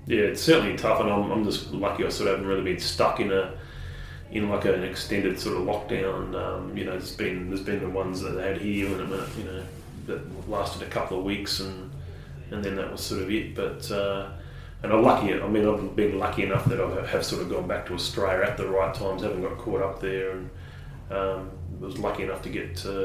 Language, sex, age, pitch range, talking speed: English, male, 20-39, 90-100 Hz, 245 wpm